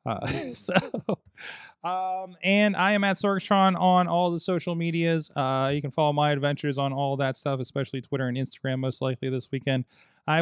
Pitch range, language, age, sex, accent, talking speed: 130-175 Hz, English, 20-39, male, American, 185 wpm